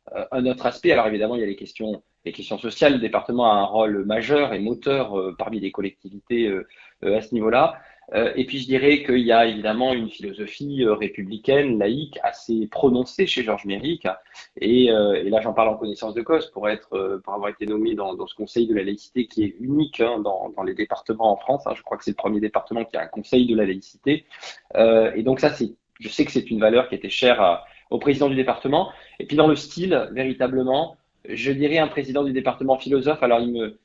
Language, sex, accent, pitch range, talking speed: French, male, French, 110-140 Hz, 230 wpm